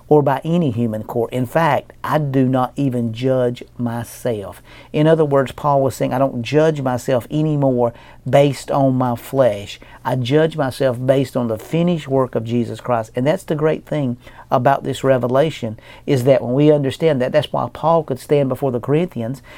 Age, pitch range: 50-69, 125-150 Hz